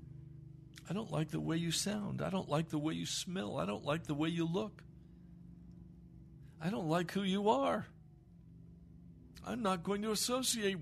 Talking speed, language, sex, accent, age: 175 wpm, English, male, American, 60-79